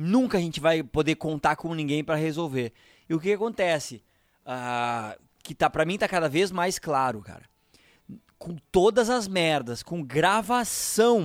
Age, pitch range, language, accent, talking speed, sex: 20-39, 140-190 Hz, Portuguese, Brazilian, 170 wpm, male